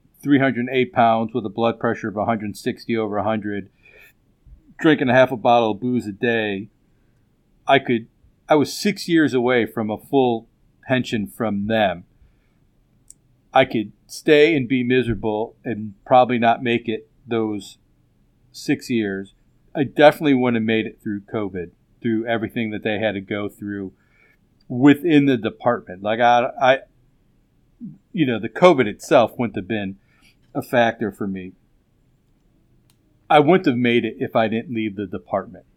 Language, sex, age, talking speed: English, male, 50-69, 155 wpm